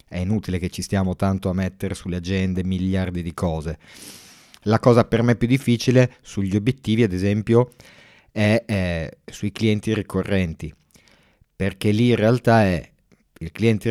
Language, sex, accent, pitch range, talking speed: Italian, male, native, 90-110 Hz, 150 wpm